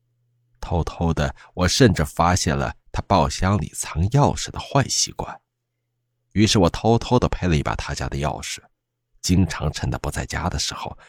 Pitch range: 85-120 Hz